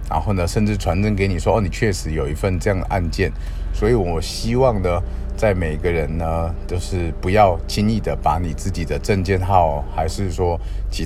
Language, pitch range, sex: Chinese, 80-100 Hz, male